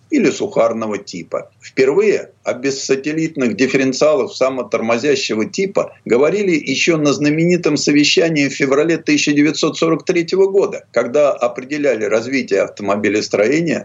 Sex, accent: male, native